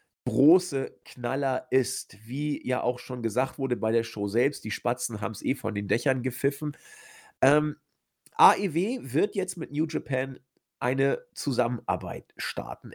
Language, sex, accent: German, male, German